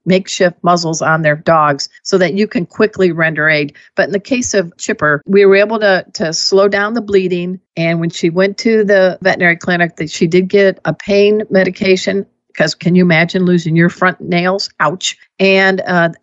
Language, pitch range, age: English, 165-200 Hz, 50-69